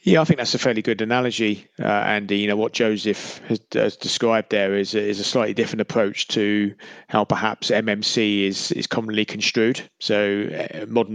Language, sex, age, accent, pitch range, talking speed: English, male, 30-49, British, 100-110 Hz, 190 wpm